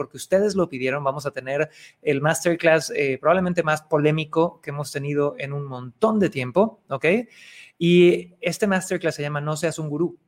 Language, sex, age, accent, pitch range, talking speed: Spanish, male, 30-49, Mexican, 145-175 Hz, 180 wpm